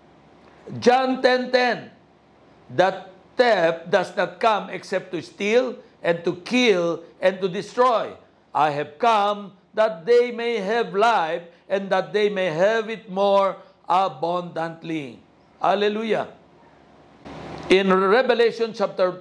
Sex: male